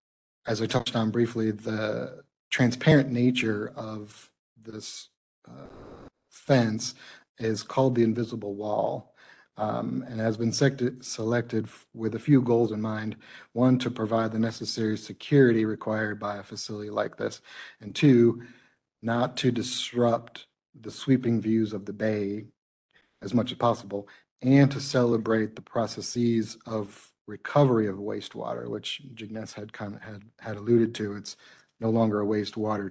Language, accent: English, American